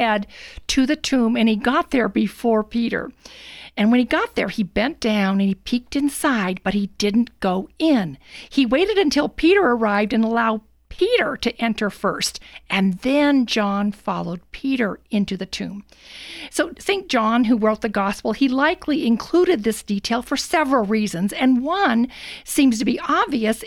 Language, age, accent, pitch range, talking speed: English, 50-69, American, 205-265 Hz, 165 wpm